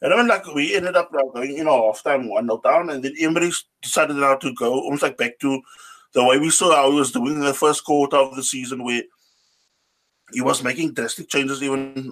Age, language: 20-39, English